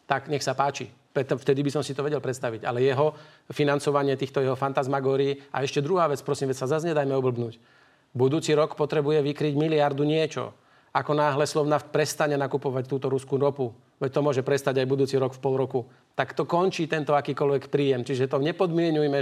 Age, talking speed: 40-59, 185 wpm